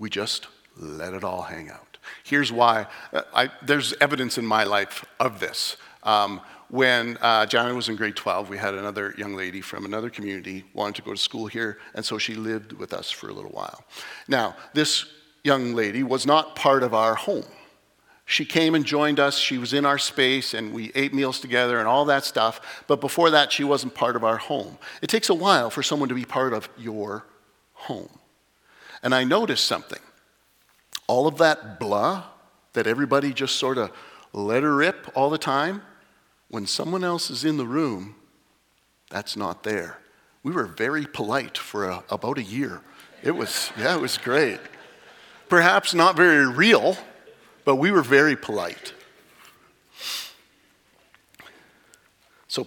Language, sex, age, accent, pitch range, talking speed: English, male, 50-69, American, 110-145 Hz, 175 wpm